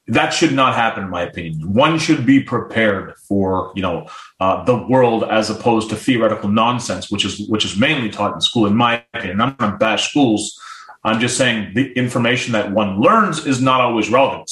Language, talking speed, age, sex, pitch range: English, 205 wpm, 30-49, male, 110-145 Hz